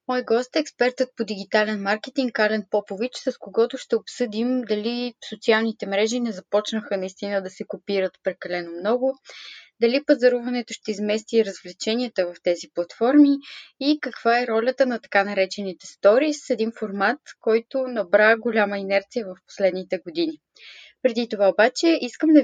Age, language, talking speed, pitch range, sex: 20-39, Bulgarian, 145 wpm, 195-250 Hz, female